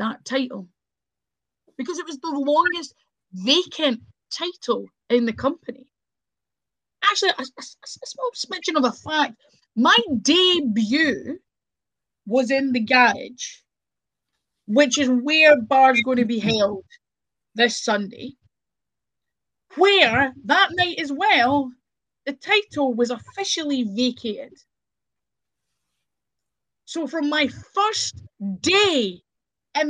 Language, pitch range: English, 250-350 Hz